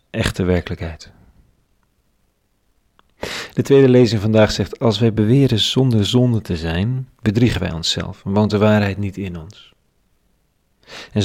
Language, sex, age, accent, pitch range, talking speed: Dutch, male, 40-59, Dutch, 95-110 Hz, 130 wpm